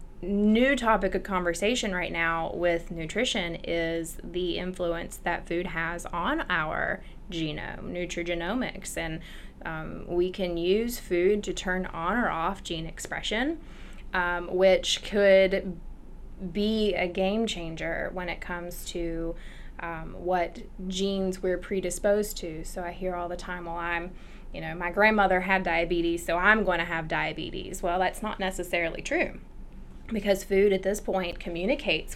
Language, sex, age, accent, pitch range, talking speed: English, female, 20-39, American, 170-195 Hz, 145 wpm